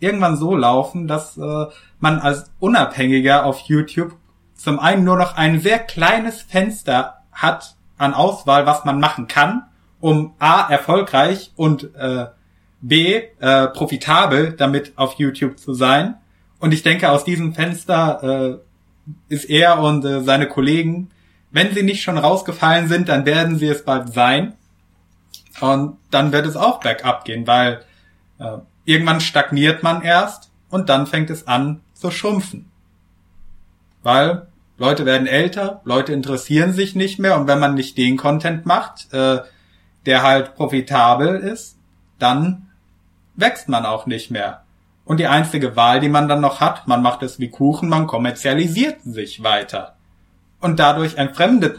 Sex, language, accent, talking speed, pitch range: male, German, German, 150 wpm, 130-165 Hz